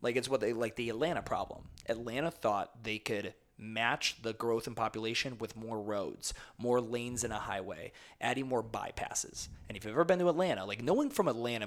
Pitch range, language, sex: 110-140 Hz, English, male